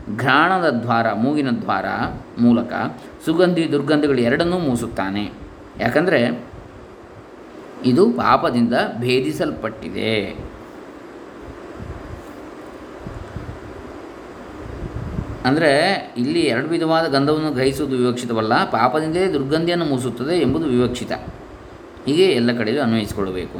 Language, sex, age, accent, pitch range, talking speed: Kannada, male, 20-39, native, 120-135 Hz, 75 wpm